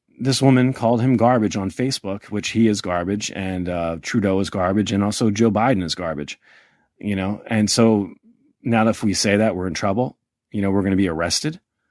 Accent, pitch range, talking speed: American, 95-115 Hz, 205 wpm